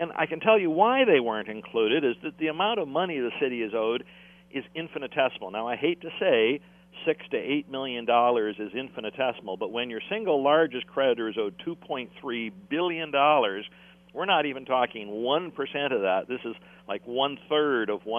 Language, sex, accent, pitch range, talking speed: English, male, American, 115-180 Hz, 175 wpm